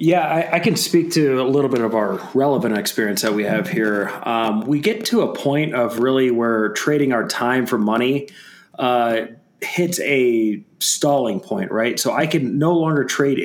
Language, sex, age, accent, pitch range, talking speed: English, male, 30-49, American, 115-145 Hz, 190 wpm